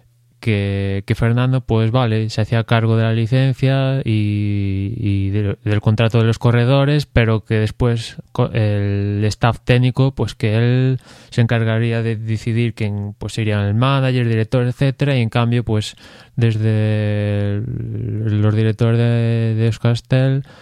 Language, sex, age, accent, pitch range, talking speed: Spanish, male, 20-39, Spanish, 110-120 Hz, 145 wpm